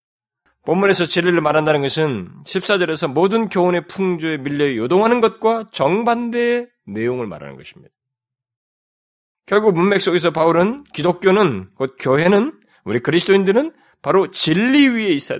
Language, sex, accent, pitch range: Korean, male, native, 125-180 Hz